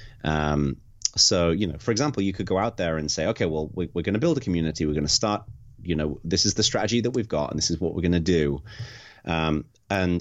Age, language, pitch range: 30-49, English, 80-105 Hz